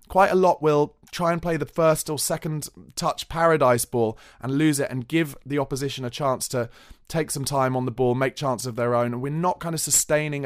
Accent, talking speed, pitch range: British, 235 wpm, 120-160 Hz